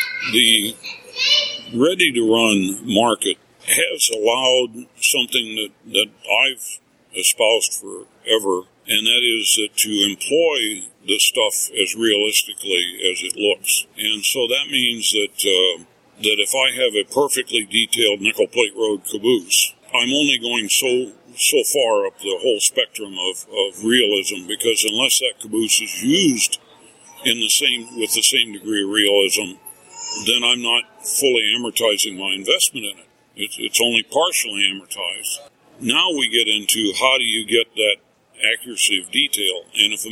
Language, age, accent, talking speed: English, 60-79, American, 145 wpm